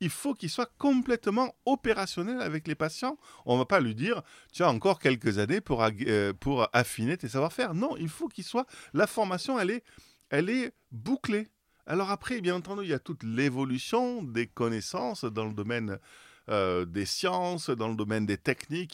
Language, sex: French, male